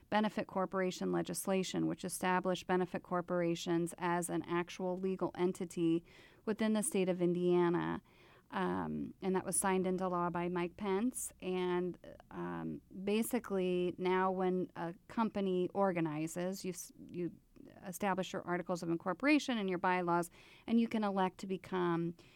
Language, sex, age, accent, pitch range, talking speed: English, female, 30-49, American, 175-190 Hz, 140 wpm